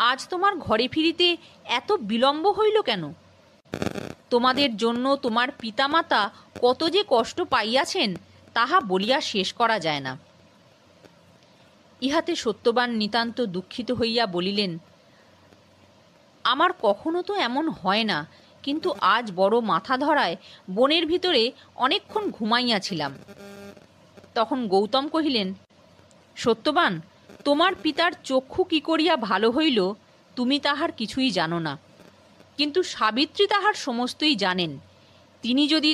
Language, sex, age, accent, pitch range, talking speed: Bengali, female, 40-59, native, 200-310 Hz, 110 wpm